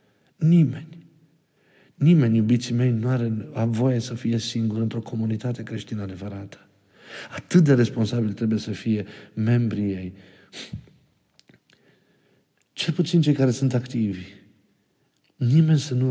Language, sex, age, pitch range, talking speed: Romanian, male, 50-69, 110-130 Hz, 115 wpm